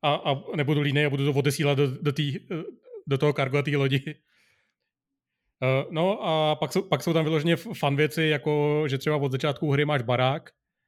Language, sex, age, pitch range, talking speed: Czech, male, 30-49, 135-150 Hz, 190 wpm